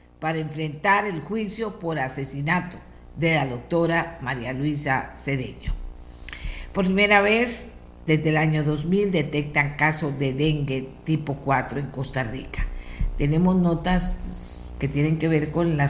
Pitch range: 140-175 Hz